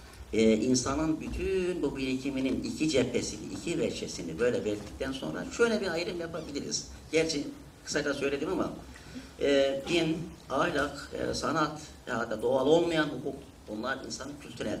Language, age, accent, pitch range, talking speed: Turkish, 60-79, native, 90-145 Hz, 135 wpm